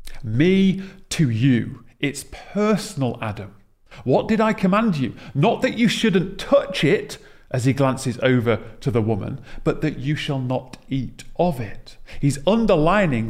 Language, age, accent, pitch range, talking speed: English, 40-59, British, 115-160 Hz, 155 wpm